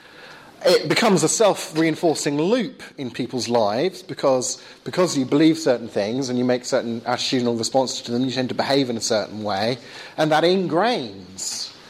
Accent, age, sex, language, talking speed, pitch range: British, 40-59, male, English, 165 wpm, 120-170 Hz